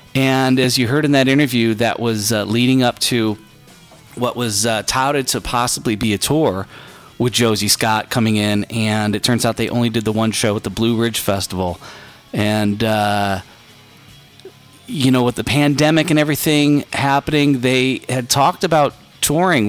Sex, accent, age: male, American, 40-59